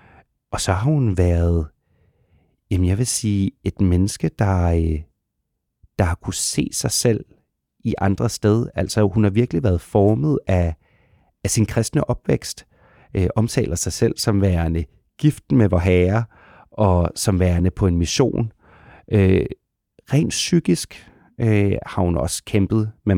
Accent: native